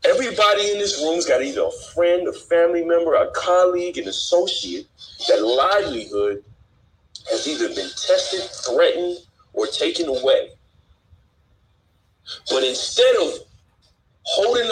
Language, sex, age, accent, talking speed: English, male, 40-59, American, 120 wpm